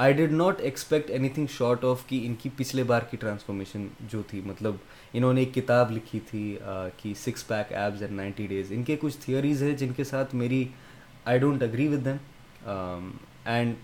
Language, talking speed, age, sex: Urdu, 200 wpm, 20-39, male